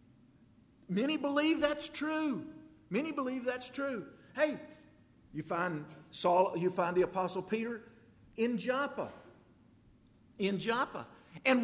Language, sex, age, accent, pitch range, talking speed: English, male, 50-69, American, 180-265 Hz, 115 wpm